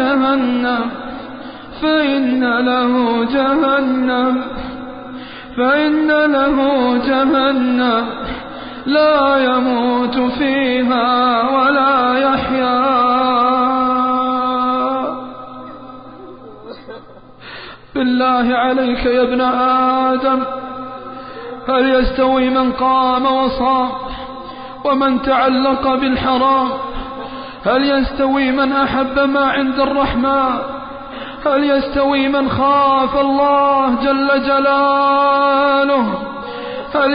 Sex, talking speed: male, 65 wpm